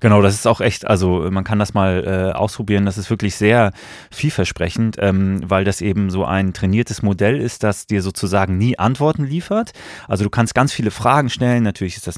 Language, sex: German, male